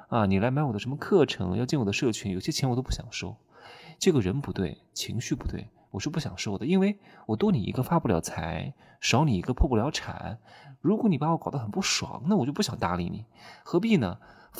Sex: male